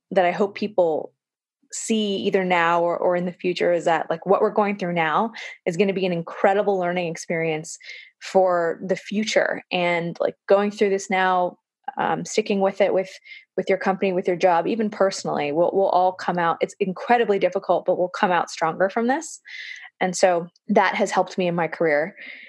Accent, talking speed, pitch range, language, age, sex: American, 200 wpm, 175-200 Hz, English, 20-39, female